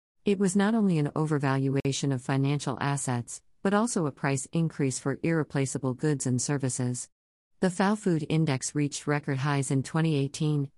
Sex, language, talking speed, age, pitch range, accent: female, English, 155 wpm, 50-69, 130-165 Hz, American